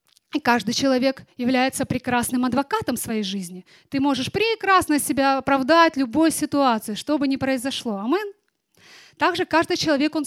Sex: female